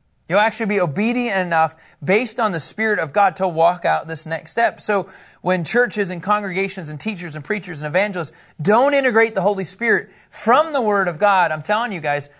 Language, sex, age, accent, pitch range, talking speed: English, male, 30-49, American, 140-205 Hz, 205 wpm